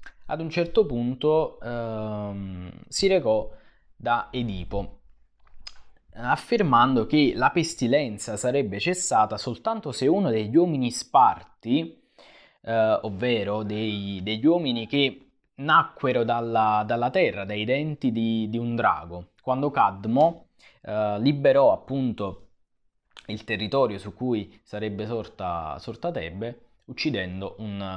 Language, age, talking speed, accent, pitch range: Italian, 20-39, 110 wpm, native, 105-150 Hz